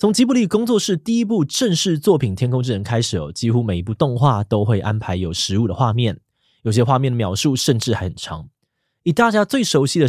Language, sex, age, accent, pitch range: Chinese, male, 20-39, native, 110-150 Hz